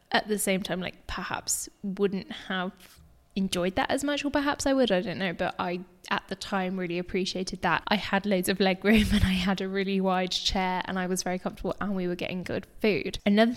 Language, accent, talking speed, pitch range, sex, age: English, British, 230 wpm, 180-220 Hz, female, 10-29